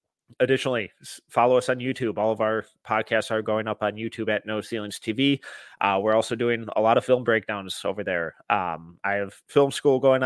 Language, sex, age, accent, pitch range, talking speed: English, male, 30-49, American, 105-125 Hz, 205 wpm